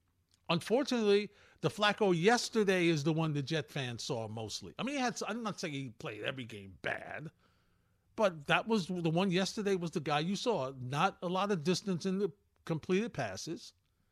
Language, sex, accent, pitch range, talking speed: English, male, American, 110-180 Hz, 185 wpm